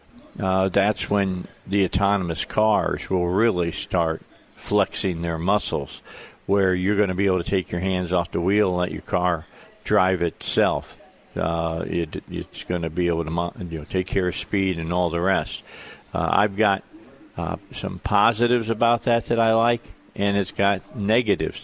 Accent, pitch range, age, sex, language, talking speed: American, 90-105 Hz, 50-69, male, English, 170 wpm